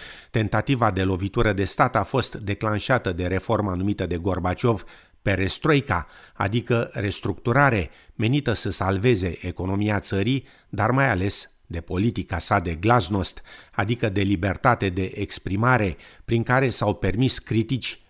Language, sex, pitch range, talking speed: Romanian, male, 90-120 Hz, 130 wpm